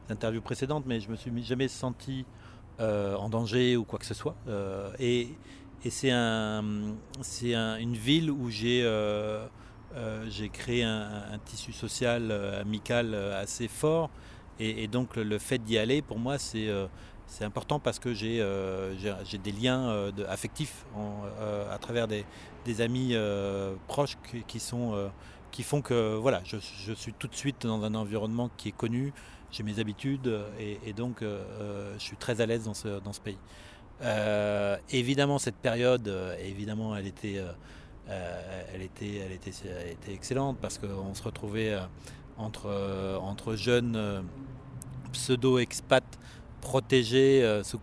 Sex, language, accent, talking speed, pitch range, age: male, French, French, 170 wpm, 100-120 Hz, 40-59